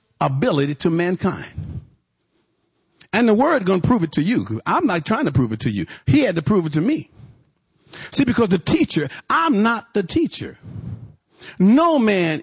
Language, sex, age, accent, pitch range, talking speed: English, male, 50-69, American, 165-235 Hz, 175 wpm